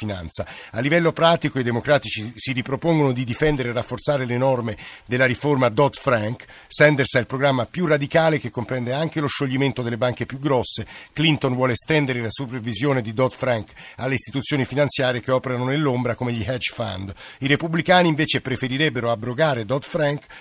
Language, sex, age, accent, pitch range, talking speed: Italian, male, 50-69, native, 115-145 Hz, 160 wpm